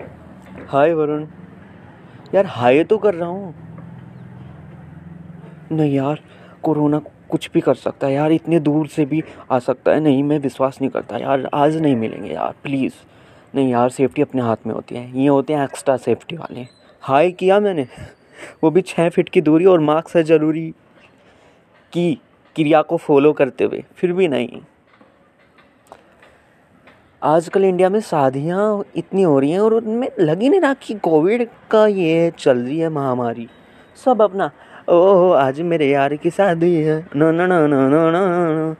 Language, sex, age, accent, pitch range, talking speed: Hindi, male, 30-49, native, 130-170 Hz, 160 wpm